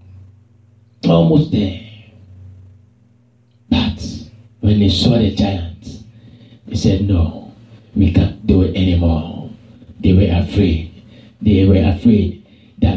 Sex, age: male, 50-69